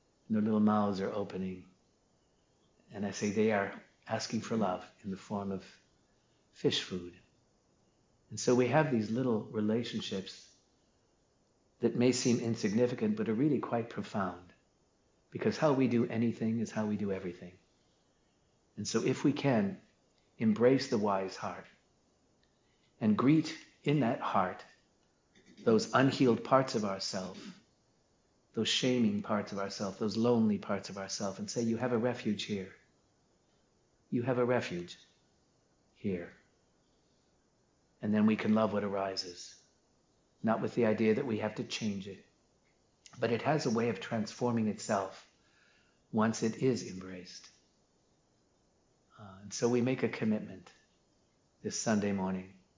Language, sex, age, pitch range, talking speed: English, male, 50-69, 100-125 Hz, 140 wpm